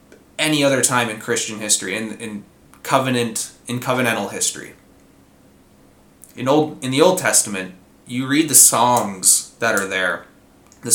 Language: English